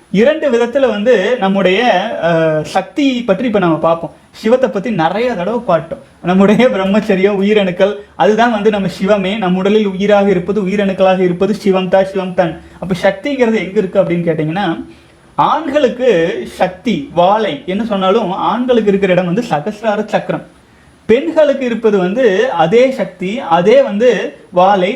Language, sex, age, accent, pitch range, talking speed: Tamil, male, 30-49, native, 185-240 Hz, 125 wpm